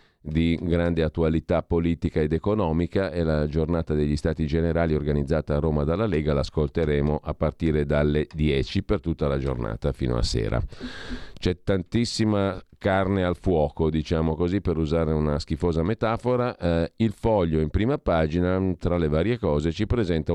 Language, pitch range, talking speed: Italian, 75-100 Hz, 155 wpm